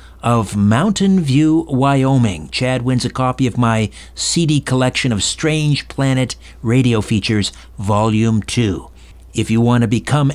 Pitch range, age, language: 100-140 Hz, 60-79, English